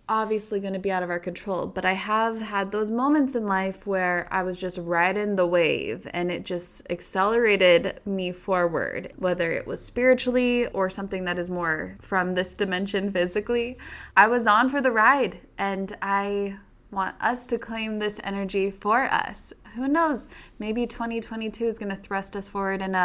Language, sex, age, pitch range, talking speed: English, female, 20-39, 190-235 Hz, 175 wpm